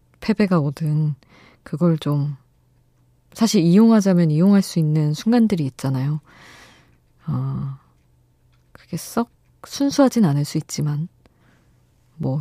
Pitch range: 135-175 Hz